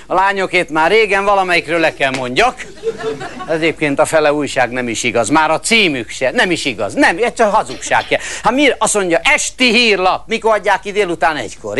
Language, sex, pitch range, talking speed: Hungarian, male, 145-225 Hz, 175 wpm